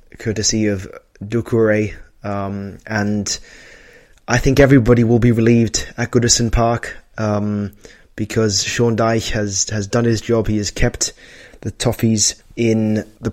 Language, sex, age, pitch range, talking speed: English, male, 20-39, 110-130 Hz, 135 wpm